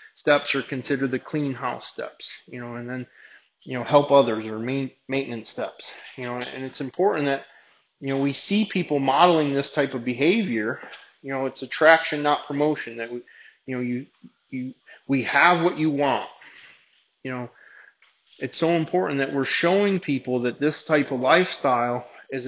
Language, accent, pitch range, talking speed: English, American, 125-145 Hz, 175 wpm